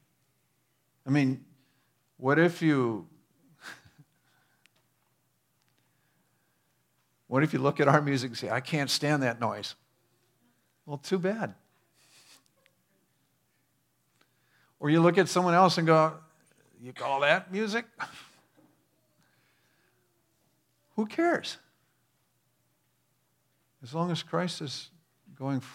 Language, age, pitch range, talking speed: English, 50-69, 115-150 Hz, 100 wpm